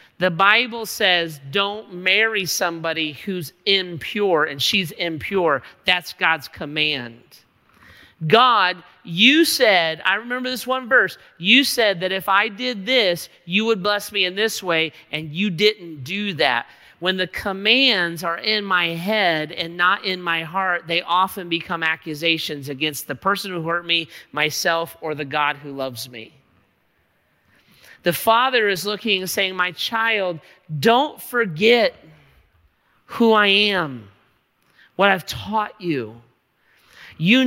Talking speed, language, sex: 140 wpm, English, male